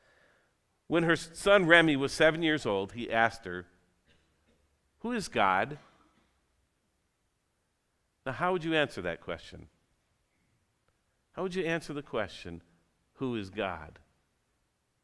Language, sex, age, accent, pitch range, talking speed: English, male, 50-69, American, 115-180 Hz, 120 wpm